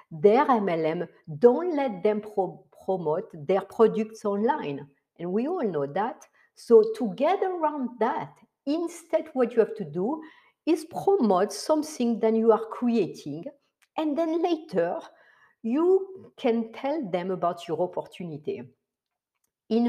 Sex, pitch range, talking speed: female, 180-285 Hz, 135 wpm